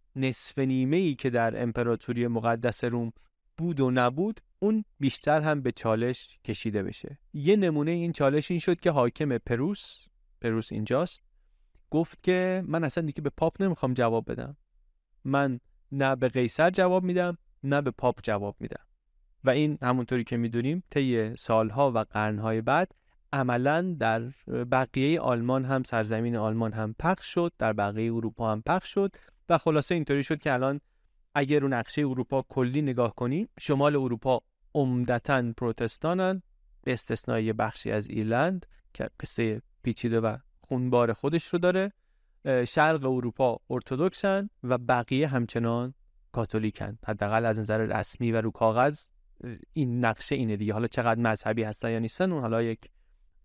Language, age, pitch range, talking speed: Persian, 30-49, 115-150 Hz, 150 wpm